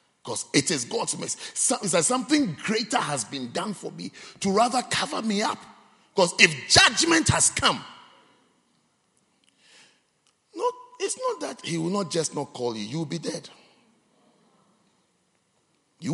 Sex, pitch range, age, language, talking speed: male, 180-270 Hz, 50-69, English, 150 wpm